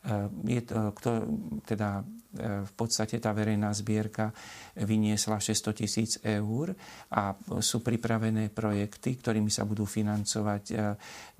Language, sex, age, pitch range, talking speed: Slovak, male, 40-59, 105-115 Hz, 90 wpm